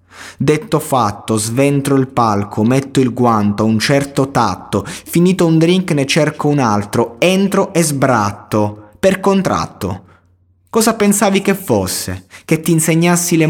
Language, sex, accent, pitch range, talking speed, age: Italian, male, native, 100-165 Hz, 140 wpm, 20-39